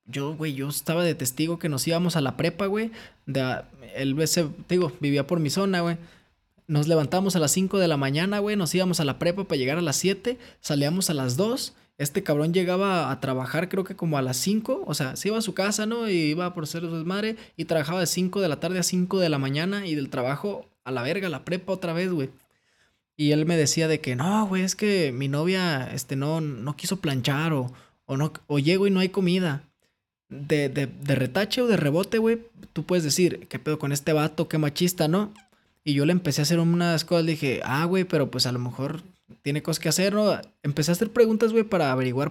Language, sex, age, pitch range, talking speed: Spanish, male, 20-39, 145-190 Hz, 235 wpm